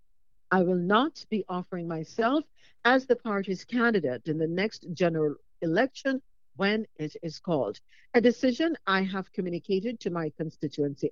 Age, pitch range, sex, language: 60-79, 165-230 Hz, female, English